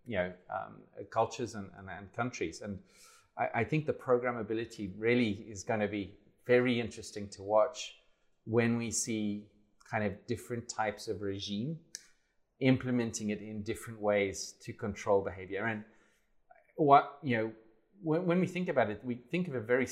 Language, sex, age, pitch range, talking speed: English, male, 30-49, 105-125 Hz, 165 wpm